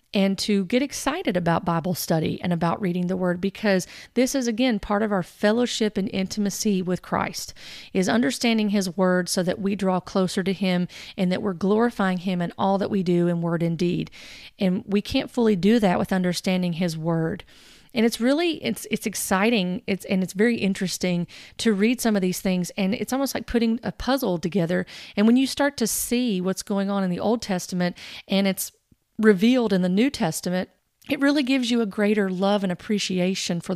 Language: English